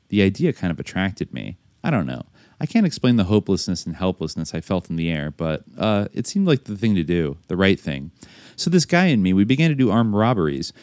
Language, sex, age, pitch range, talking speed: English, male, 30-49, 85-110 Hz, 245 wpm